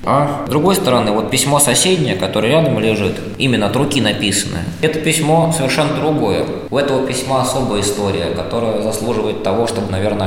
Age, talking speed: 20-39, 165 wpm